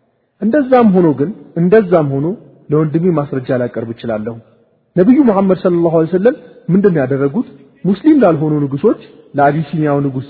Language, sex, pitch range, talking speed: Amharic, male, 125-175 Hz, 120 wpm